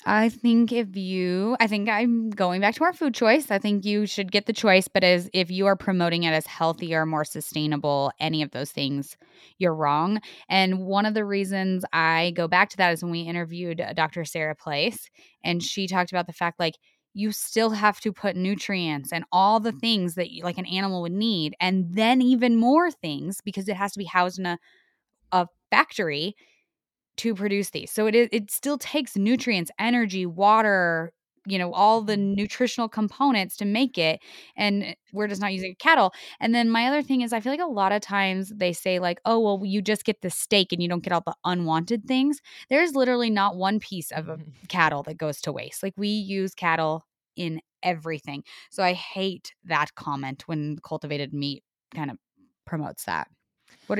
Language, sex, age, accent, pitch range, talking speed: English, female, 20-39, American, 170-215 Hz, 200 wpm